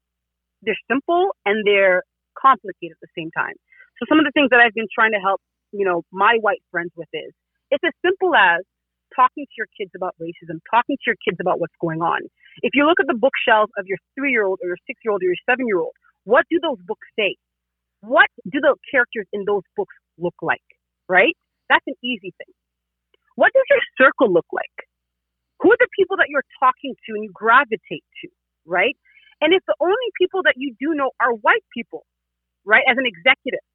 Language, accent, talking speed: English, American, 205 wpm